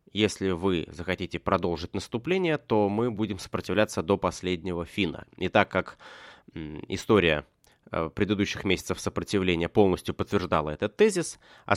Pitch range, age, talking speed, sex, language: 90-125 Hz, 20-39, 120 wpm, male, Russian